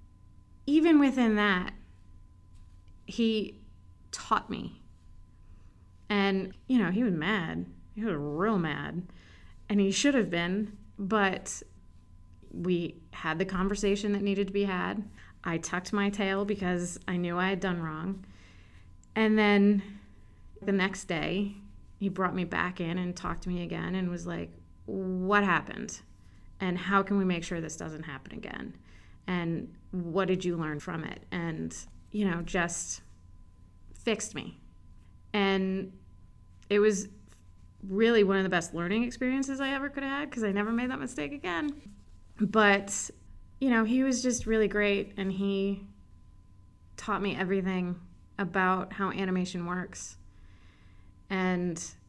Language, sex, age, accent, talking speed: English, female, 30-49, American, 145 wpm